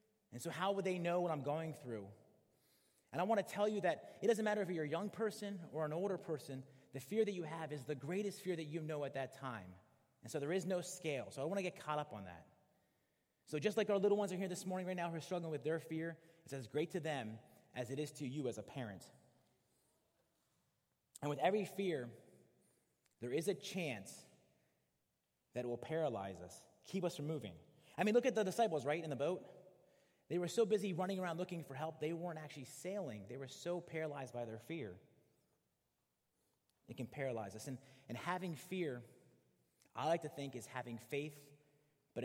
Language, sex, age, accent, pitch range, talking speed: English, male, 30-49, American, 125-185 Hz, 215 wpm